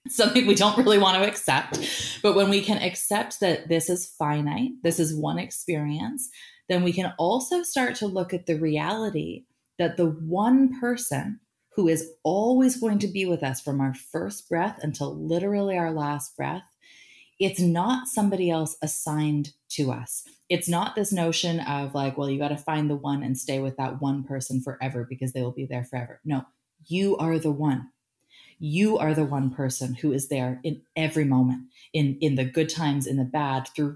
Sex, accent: female, American